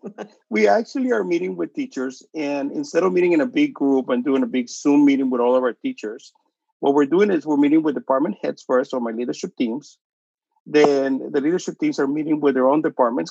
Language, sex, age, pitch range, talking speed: English, male, 50-69, 135-175 Hz, 220 wpm